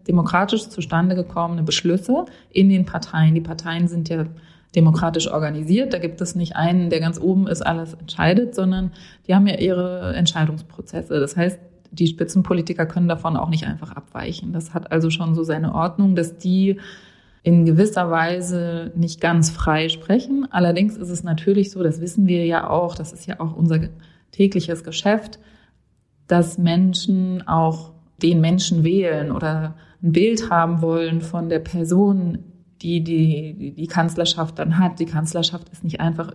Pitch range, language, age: 165-185 Hz, German, 30-49